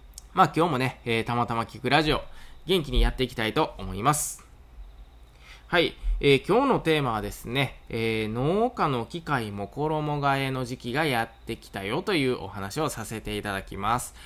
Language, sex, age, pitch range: Japanese, male, 20-39, 110-150 Hz